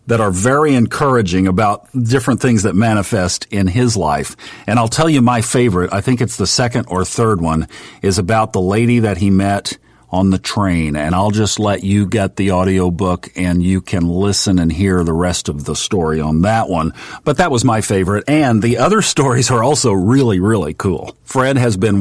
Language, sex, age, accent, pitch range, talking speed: English, male, 50-69, American, 95-120 Hz, 205 wpm